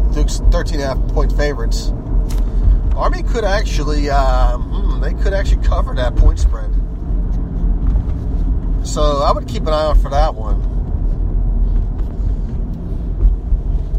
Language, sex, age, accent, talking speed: English, male, 30-49, American, 105 wpm